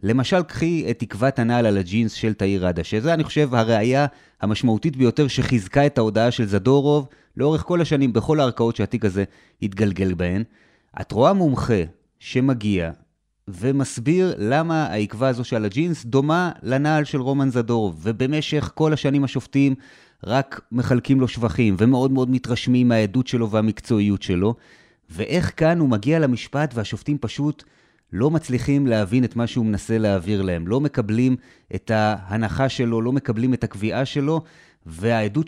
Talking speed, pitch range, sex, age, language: 145 wpm, 110-140 Hz, male, 30-49, Hebrew